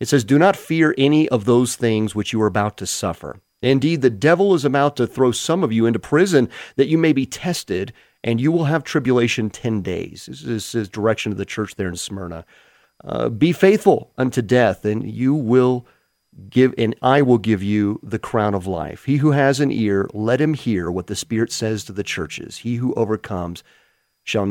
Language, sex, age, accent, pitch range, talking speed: English, male, 40-59, American, 100-125 Hz, 210 wpm